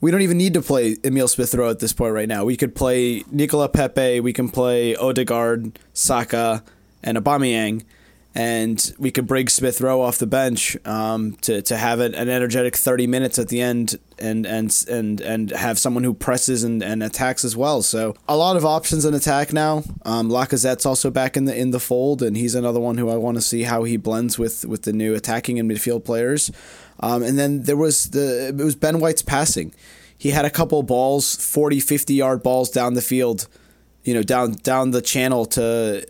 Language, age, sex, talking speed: English, 20-39, male, 210 wpm